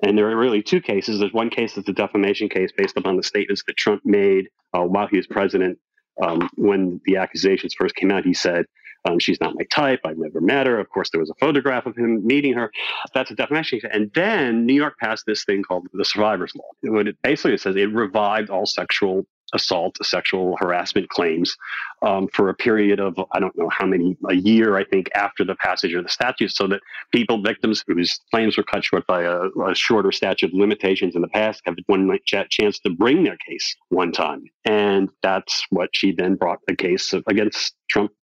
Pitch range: 100-115 Hz